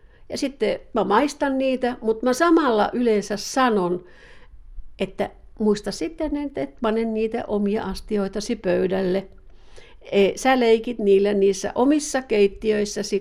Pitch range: 190-255 Hz